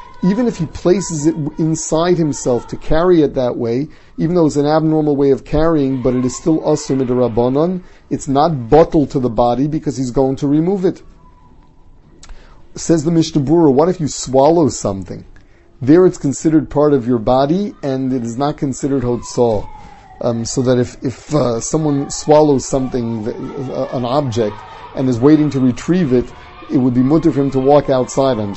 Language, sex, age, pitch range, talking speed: English, male, 30-49, 130-160 Hz, 185 wpm